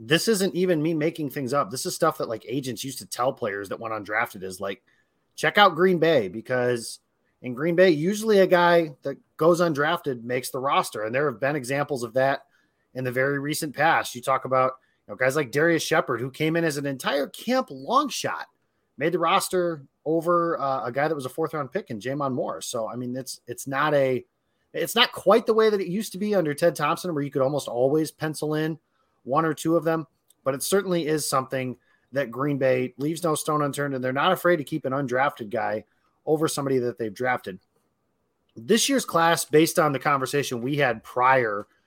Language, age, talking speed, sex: English, 30-49, 220 wpm, male